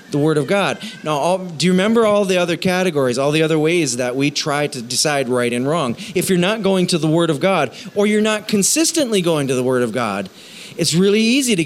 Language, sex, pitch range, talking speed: English, male, 150-210 Hz, 240 wpm